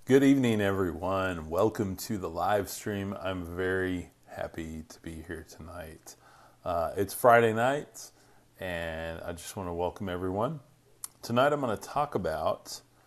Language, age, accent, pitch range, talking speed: English, 30-49, American, 95-115 Hz, 145 wpm